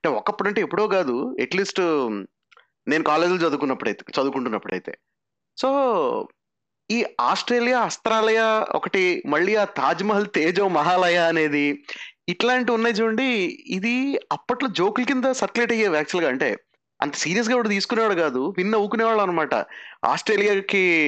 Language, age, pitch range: Telugu, 30-49, 170-240 Hz